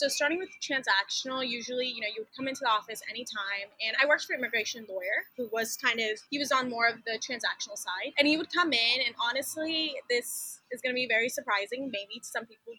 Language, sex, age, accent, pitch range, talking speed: English, female, 20-39, American, 225-285 Hz, 240 wpm